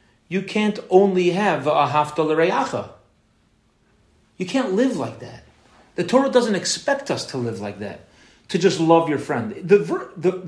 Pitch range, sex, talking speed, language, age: 130-190 Hz, male, 160 wpm, English, 40-59